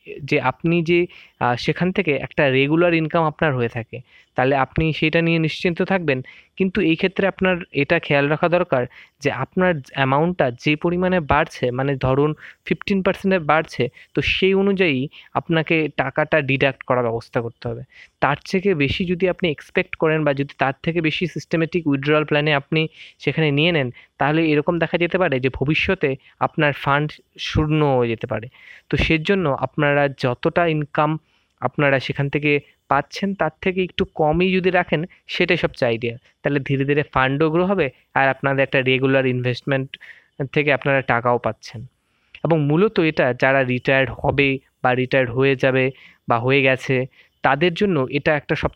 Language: Bengali